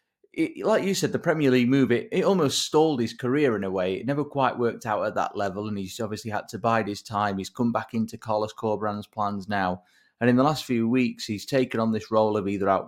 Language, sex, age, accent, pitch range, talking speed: English, male, 30-49, British, 105-130 Hz, 250 wpm